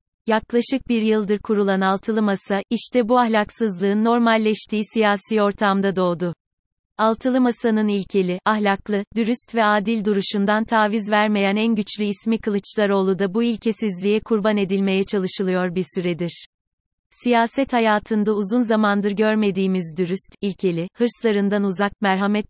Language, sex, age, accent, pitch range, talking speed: Turkish, female, 30-49, native, 195-225 Hz, 120 wpm